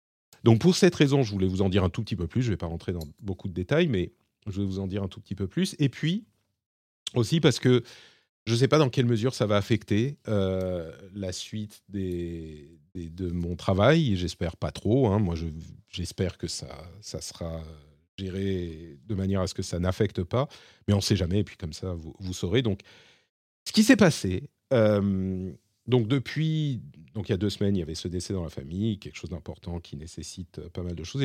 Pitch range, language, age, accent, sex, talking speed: 90-115 Hz, French, 40-59, French, male, 230 wpm